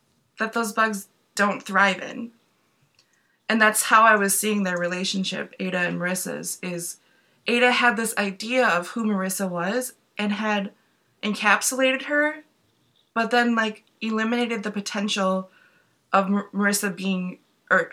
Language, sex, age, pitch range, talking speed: English, female, 20-39, 195-245 Hz, 135 wpm